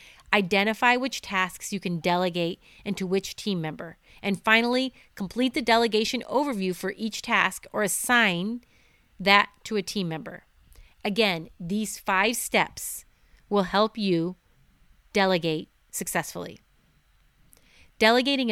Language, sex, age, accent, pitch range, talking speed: English, female, 30-49, American, 185-230 Hz, 120 wpm